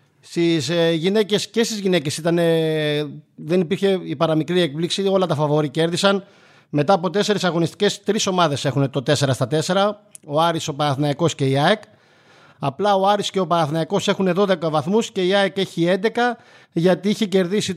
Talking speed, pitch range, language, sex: 165 wpm, 155-200 Hz, Greek, male